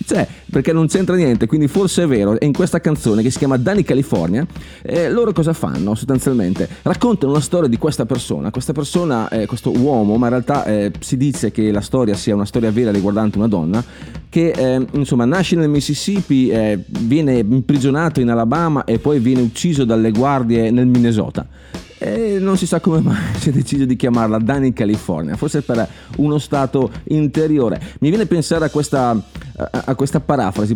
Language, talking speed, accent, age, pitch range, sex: Italian, 185 wpm, native, 30-49, 115-145 Hz, male